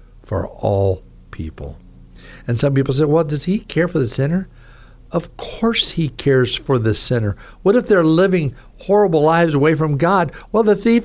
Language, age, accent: English, 50-69, American